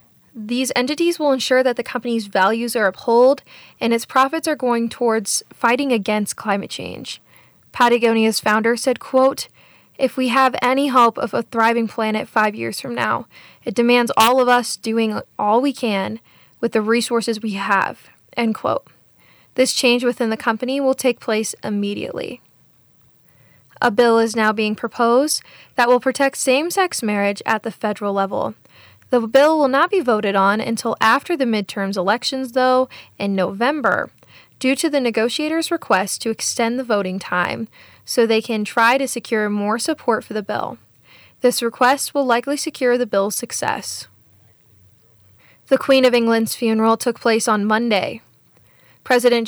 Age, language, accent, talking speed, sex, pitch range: 10-29, English, American, 160 wpm, female, 215-255 Hz